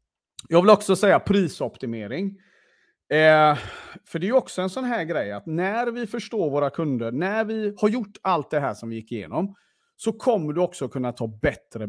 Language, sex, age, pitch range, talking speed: Swedish, male, 40-59, 125-190 Hz, 195 wpm